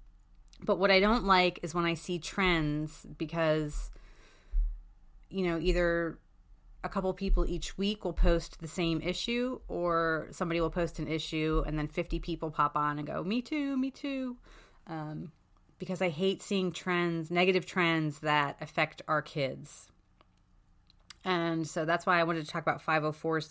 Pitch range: 150-190 Hz